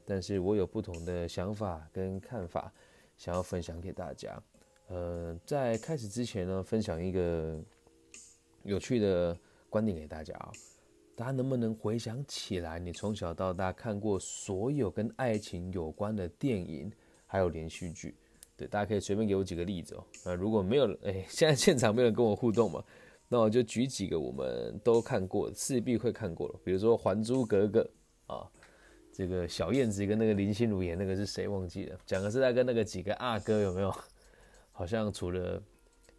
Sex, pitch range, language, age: male, 90-120 Hz, Chinese, 20-39